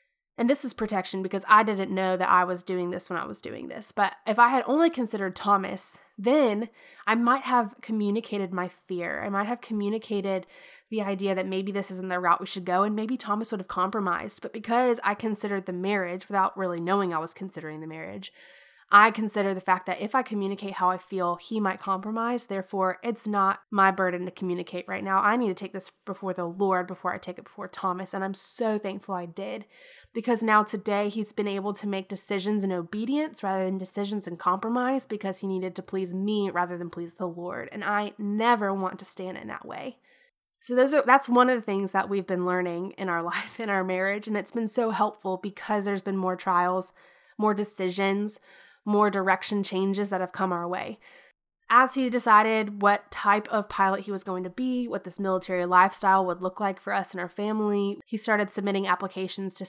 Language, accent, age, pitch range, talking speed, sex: English, American, 10-29, 185-215 Hz, 215 wpm, female